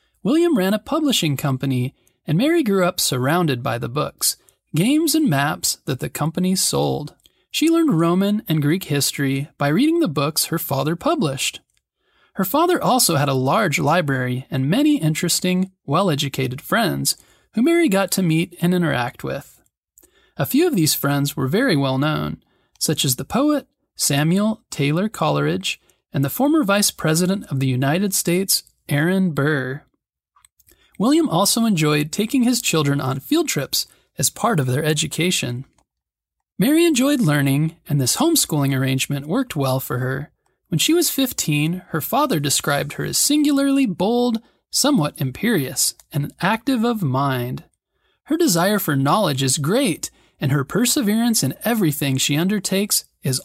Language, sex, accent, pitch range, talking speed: English, male, American, 140-235 Hz, 155 wpm